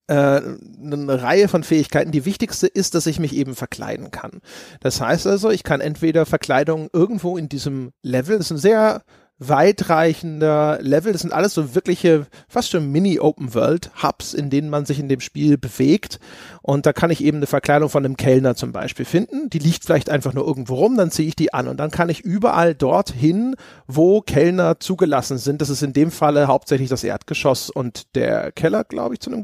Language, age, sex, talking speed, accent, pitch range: German, 30-49, male, 195 wpm, German, 145-180 Hz